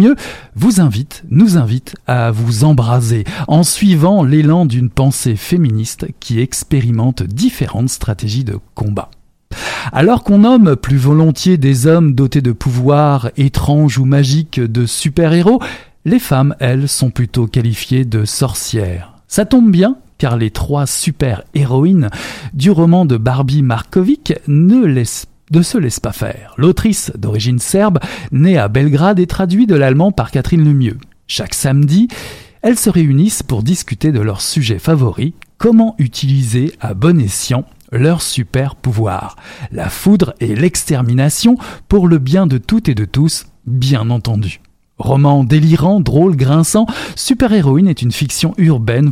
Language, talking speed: French, 145 wpm